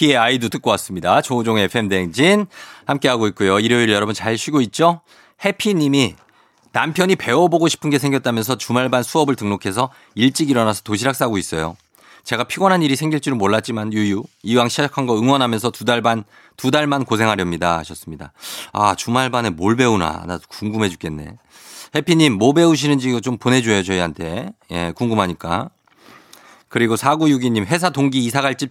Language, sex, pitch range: Korean, male, 105-150 Hz